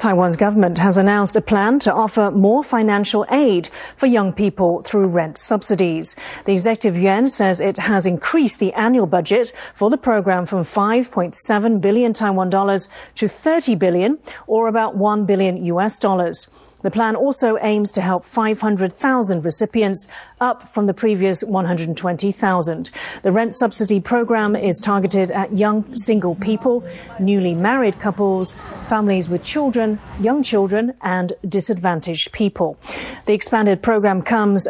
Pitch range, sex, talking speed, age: 190-225 Hz, female, 140 wpm, 40-59